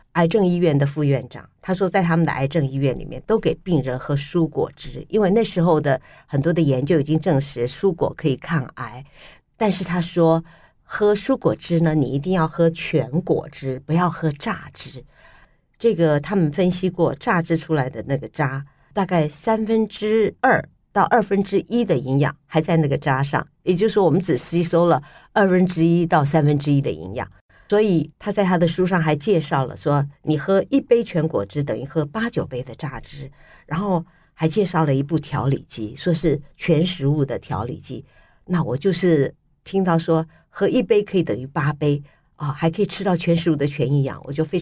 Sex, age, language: female, 50-69, Chinese